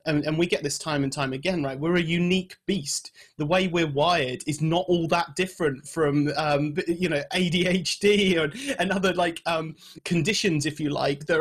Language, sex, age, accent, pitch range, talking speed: English, male, 30-49, British, 145-180 Hz, 195 wpm